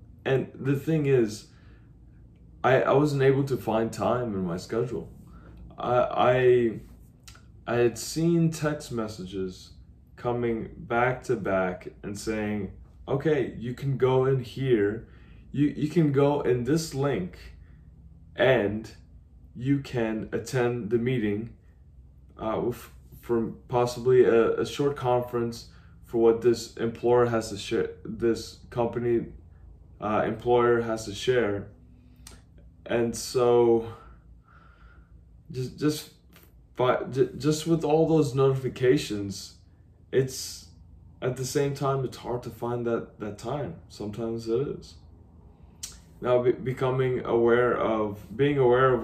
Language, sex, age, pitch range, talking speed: English, male, 20-39, 90-125 Hz, 120 wpm